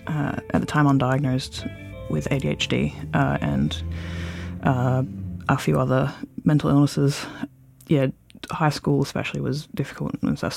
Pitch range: 135-145 Hz